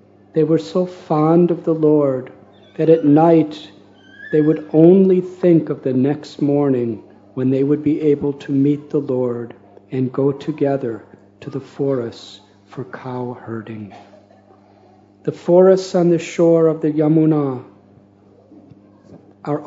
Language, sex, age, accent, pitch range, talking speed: English, male, 50-69, American, 115-155 Hz, 135 wpm